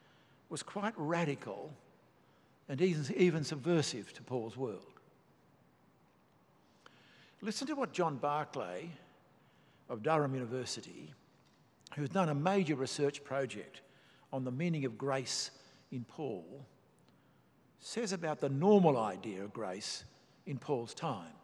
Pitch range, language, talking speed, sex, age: 130-175 Hz, English, 115 wpm, male, 60-79